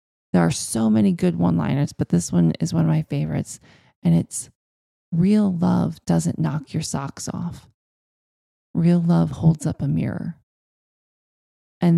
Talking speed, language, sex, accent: 155 wpm, English, male, American